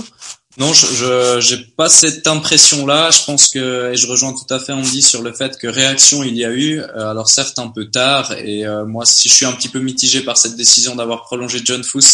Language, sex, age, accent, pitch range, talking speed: French, male, 20-39, French, 115-135 Hz, 225 wpm